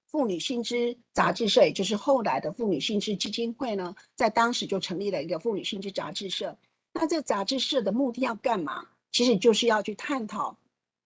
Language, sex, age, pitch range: Chinese, female, 50-69, 195-255 Hz